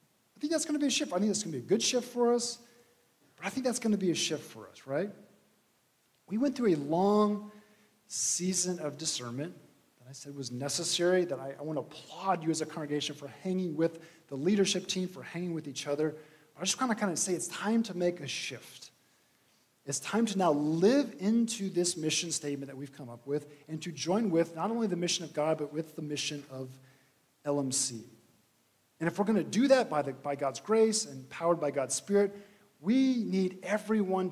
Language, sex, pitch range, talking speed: English, male, 150-200 Hz, 225 wpm